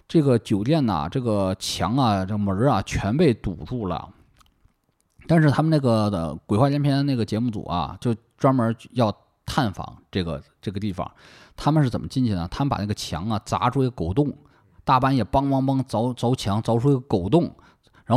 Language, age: Chinese, 20-39